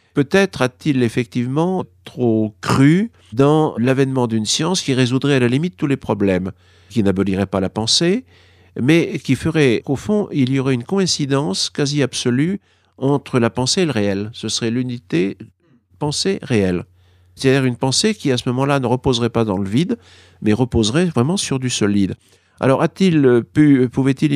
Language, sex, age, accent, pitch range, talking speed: French, male, 50-69, French, 100-140 Hz, 165 wpm